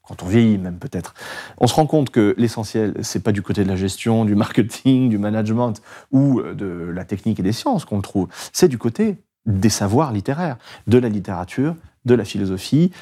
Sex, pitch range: male, 105-130 Hz